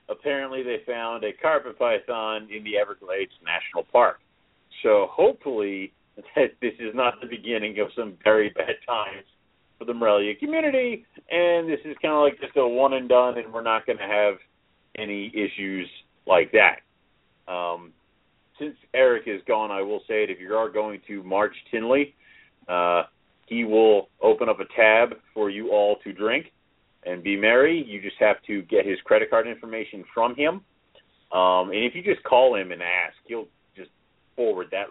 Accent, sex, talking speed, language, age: American, male, 175 wpm, English, 40-59